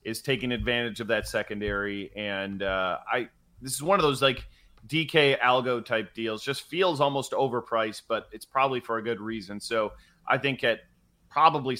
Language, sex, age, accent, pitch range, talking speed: English, male, 30-49, American, 110-145 Hz, 175 wpm